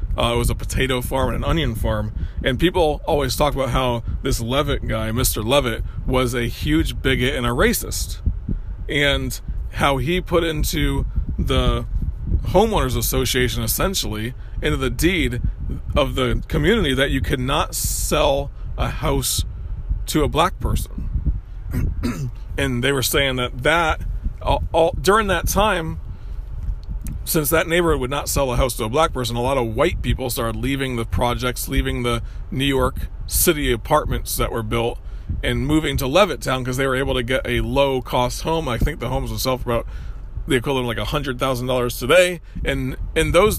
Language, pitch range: English, 115-140 Hz